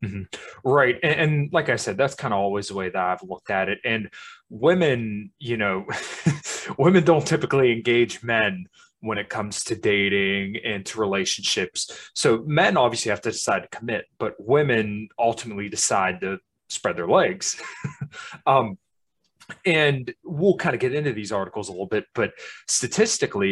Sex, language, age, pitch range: male, English, 20-39, 100-140 Hz